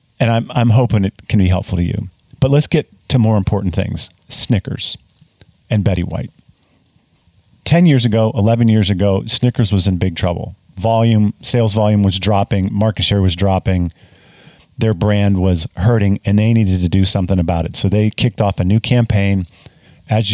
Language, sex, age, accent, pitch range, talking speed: English, male, 50-69, American, 95-120 Hz, 180 wpm